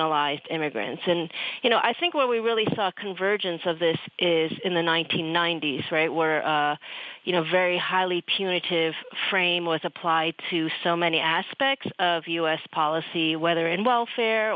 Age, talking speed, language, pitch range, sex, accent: 30-49, 155 wpm, English, 165-205 Hz, female, American